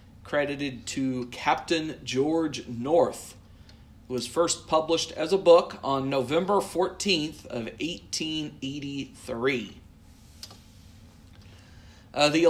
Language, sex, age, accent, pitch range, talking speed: English, male, 40-59, American, 120-155 Hz, 80 wpm